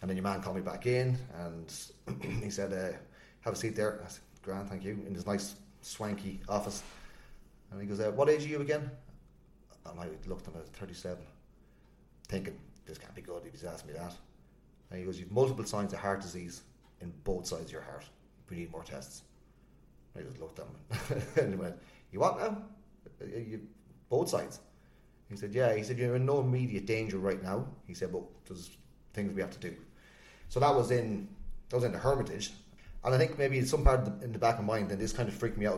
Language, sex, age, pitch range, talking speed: English, male, 30-49, 95-115 Hz, 225 wpm